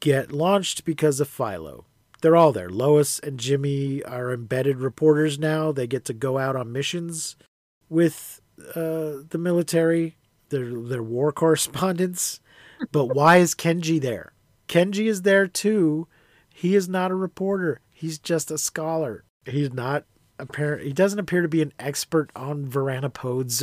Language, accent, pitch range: English, American, 125-170 Hz